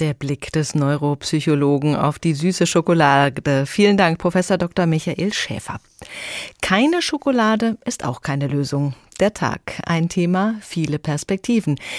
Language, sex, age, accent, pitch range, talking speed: German, female, 40-59, German, 145-195 Hz, 130 wpm